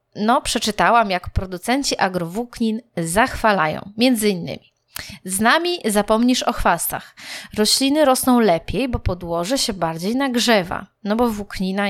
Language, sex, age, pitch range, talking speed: Polish, female, 20-39, 200-260 Hz, 120 wpm